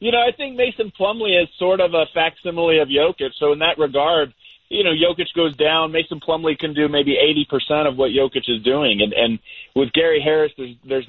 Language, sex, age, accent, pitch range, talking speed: English, male, 30-49, American, 145-190 Hz, 215 wpm